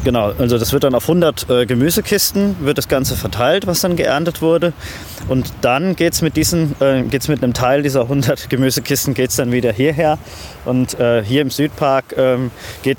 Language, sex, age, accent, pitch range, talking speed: German, male, 20-39, German, 115-140 Hz, 185 wpm